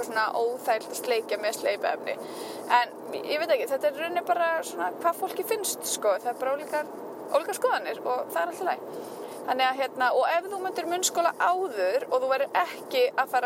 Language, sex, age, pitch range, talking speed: English, female, 20-39, 240-375 Hz, 185 wpm